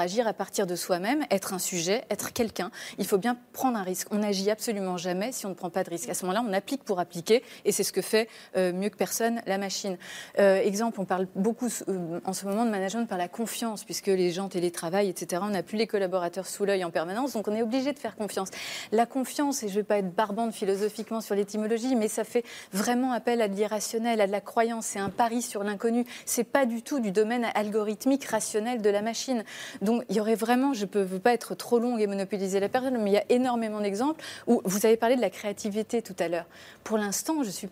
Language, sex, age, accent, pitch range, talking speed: French, female, 30-49, French, 195-235 Hz, 250 wpm